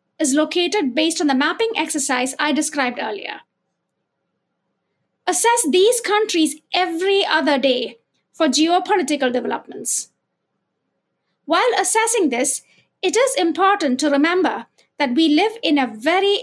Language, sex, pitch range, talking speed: English, female, 290-395 Hz, 120 wpm